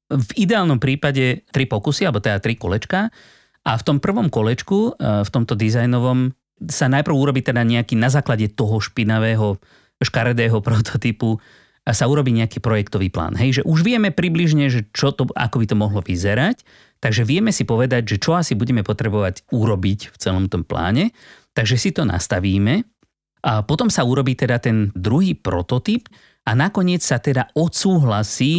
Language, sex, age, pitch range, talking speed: Slovak, male, 30-49, 105-145 Hz, 160 wpm